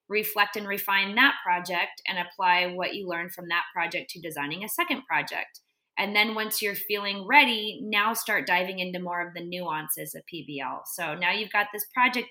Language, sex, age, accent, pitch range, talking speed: English, female, 20-39, American, 175-210 Hz, 195 wpm